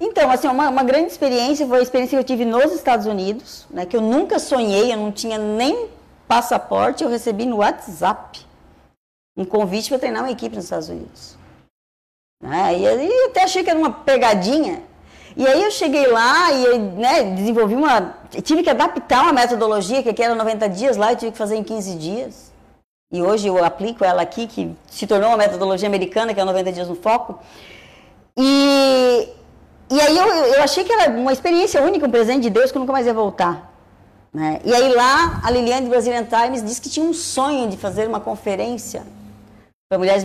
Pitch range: 205-265 Hz